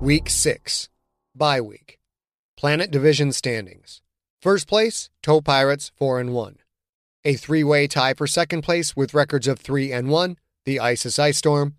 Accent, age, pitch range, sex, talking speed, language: American, 30-49, 130-165 Hz, male, 155 wpm, English